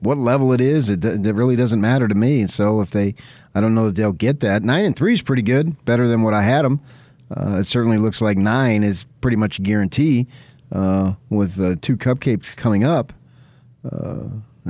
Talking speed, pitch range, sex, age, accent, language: 210 wpm, 90-110 Hz, male, 40-59, American, English